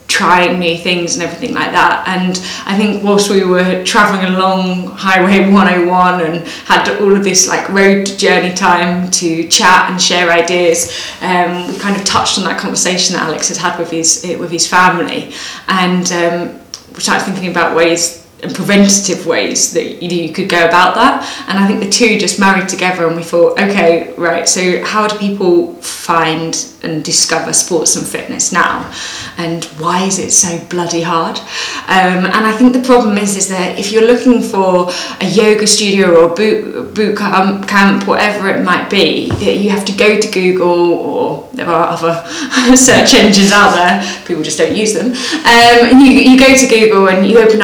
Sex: female